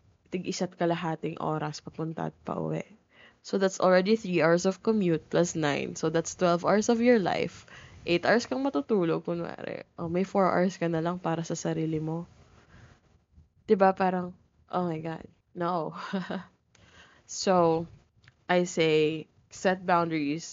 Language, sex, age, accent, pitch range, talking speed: English, female, 20-39, Filipino, 160-190 Hz, 145 wpm